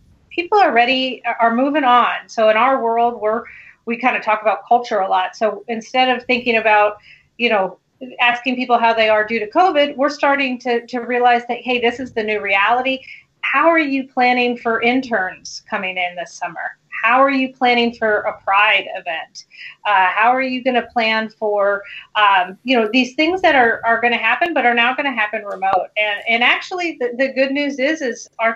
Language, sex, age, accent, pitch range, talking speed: English, female, 40-59, American, 215-255 Hz, 210 wpm